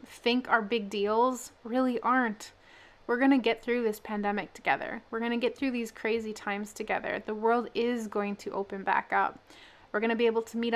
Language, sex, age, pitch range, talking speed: English, female, 20-39, 215-265 Hz, 210 wpm